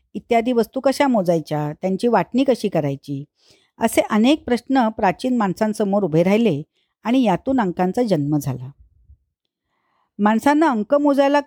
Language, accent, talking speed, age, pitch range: Marathi, native, 120 wpm, 50-69, 190-260 Hz